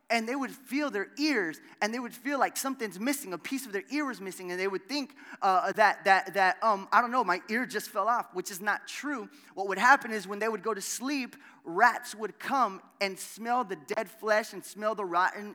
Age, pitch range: 20-39, 195-275 Hz